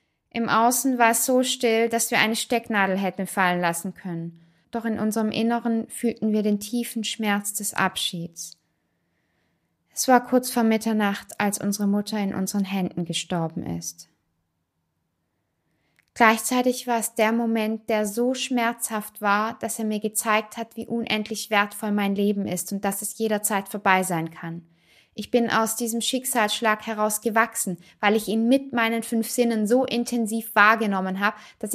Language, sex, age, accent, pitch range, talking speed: German, female, 20-39, German, 200-235 Hz, 155 wpm